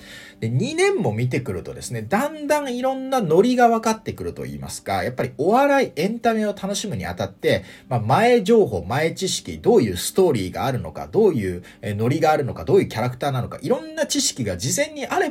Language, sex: Japanese, male